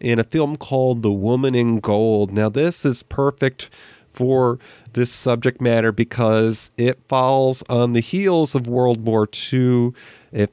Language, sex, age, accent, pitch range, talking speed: English, male, 40-59, American, 115-135 Hz, 155 wpm